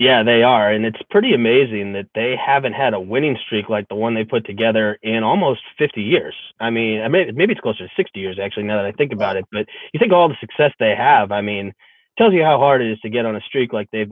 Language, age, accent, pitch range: English, 20-39, American, 105-120 Hz